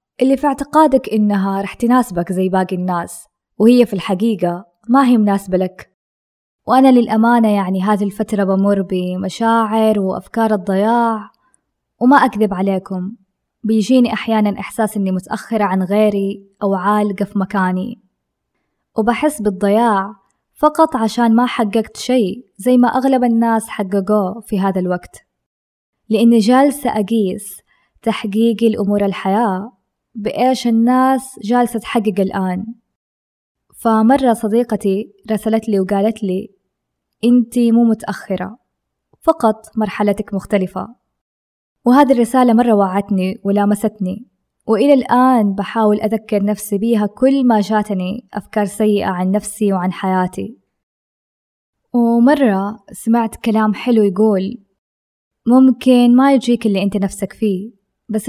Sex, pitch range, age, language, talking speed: female, 195-235 Hz, 20-39, Arabic, 115 wpm